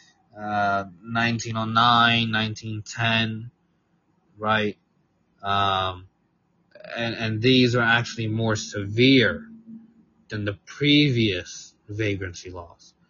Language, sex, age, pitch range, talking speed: English, male, 20-39, 100-135 Hz, 80 wpm